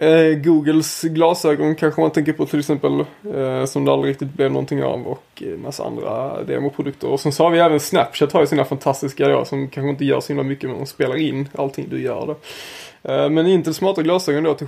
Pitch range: 140-160 Hz